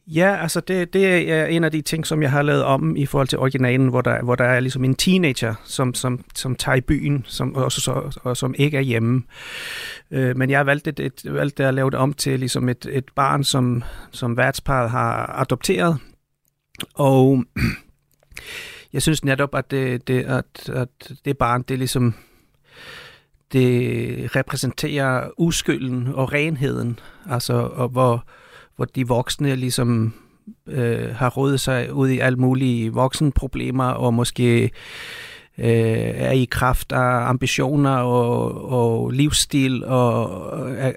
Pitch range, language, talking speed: 125-145 Hz, Danish, 145 wpm